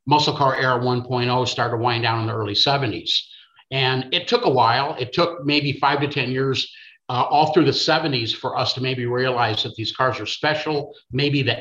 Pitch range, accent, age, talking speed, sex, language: 120-145 Hz, American, 50-69, 210 wpm, male, English